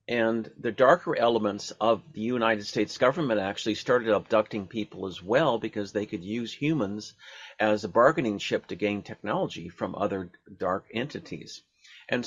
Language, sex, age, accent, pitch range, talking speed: English, male, 50-69, American, 105-135 Hz, 155 wpm